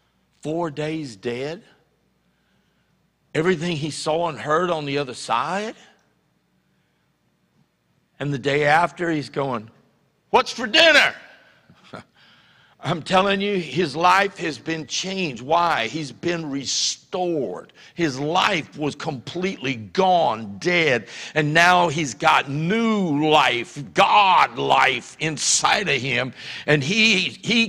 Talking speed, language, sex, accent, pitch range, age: 115 wpm, English, male, American, 150-210 Hz, 60-79